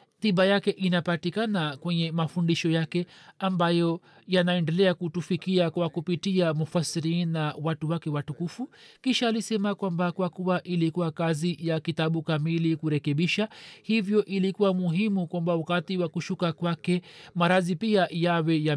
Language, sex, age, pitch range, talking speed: Swahili, male, 40-59, 165-195 Hz, 125 wpm